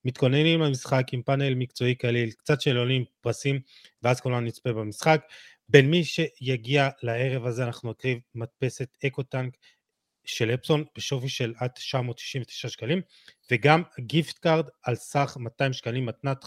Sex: male